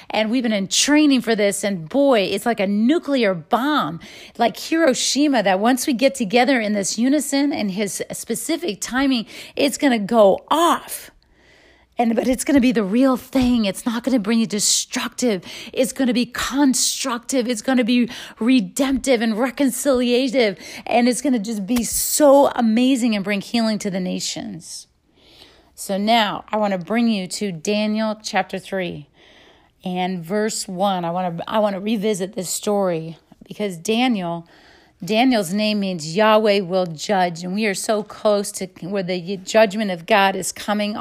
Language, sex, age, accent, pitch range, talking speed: English, female, 30-49, American, 200-260 Hz, 175 wpm